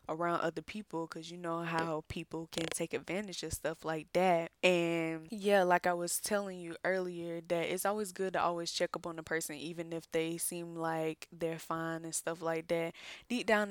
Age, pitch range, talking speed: 10-29, 160-180 Hz, 205 wpm